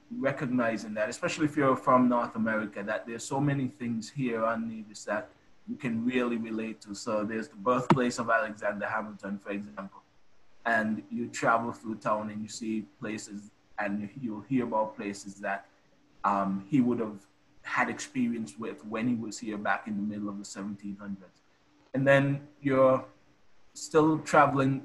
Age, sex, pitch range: 20-39, male, 110-130 Hz